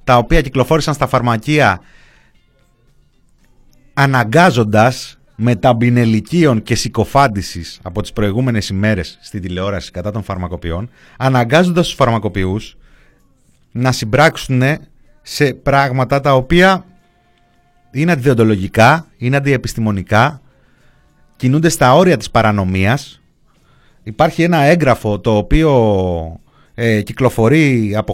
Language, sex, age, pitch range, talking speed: Greek, male, 30-49, 105-140 Hz, 90 wpm